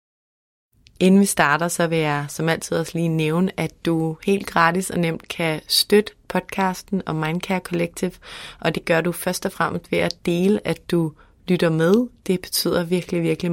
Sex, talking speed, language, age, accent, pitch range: female, 180 wpm, Danish, 30-49, native, 160-185 Hz